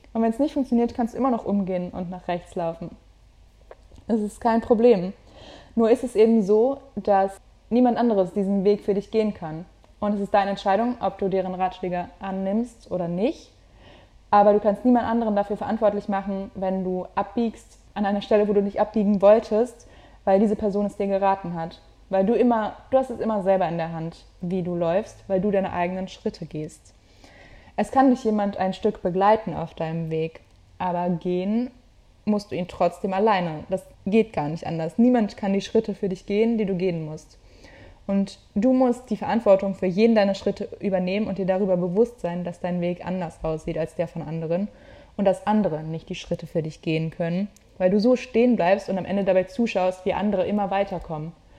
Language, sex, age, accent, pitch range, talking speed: German, female, 20-39, German, 180-215 Hz, 200 wpm